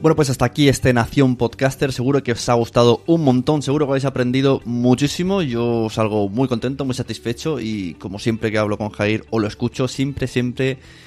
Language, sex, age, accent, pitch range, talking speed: Spanish, male, 20-39, Spanish, 115-140 Hz, 200 wpm